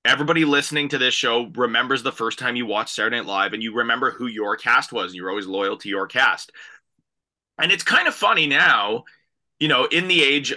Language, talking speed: English, 215 wpm